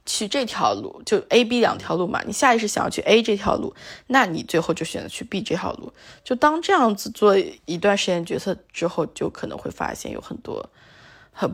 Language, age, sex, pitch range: Chinese, 20-39, female, 185-245 Hz